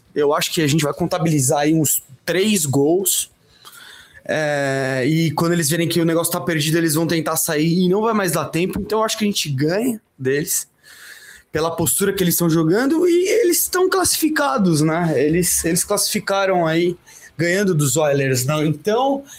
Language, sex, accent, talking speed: English, male, Brazilian, 185 wpm